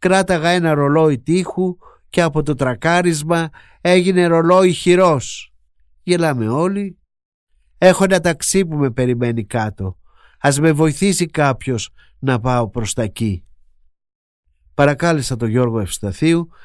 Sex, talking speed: male, 120 wpm